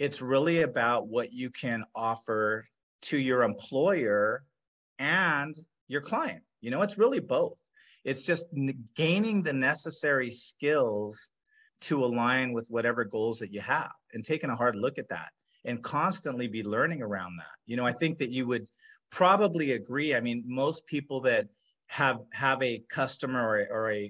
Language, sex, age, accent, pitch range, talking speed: English, male, 40-59, American, 115-155 Hz, 165 wpm